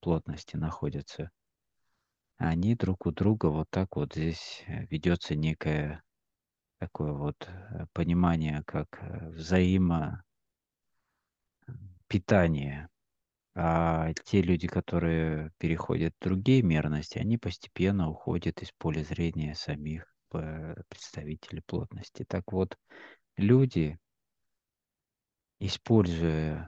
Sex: male